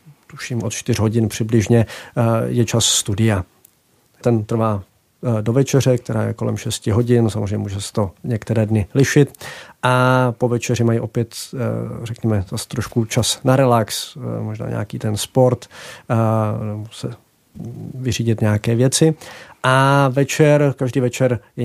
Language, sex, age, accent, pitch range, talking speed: Czech, male, 40-59, native, 105-120 Hz, 135 wpm